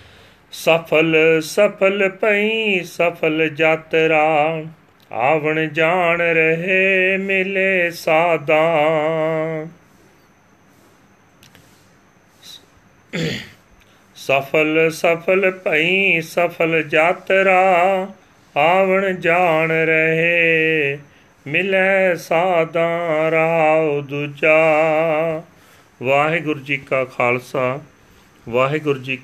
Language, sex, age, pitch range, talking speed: Punjabi, male, 40-59, 130-160 Hz, 55 wpm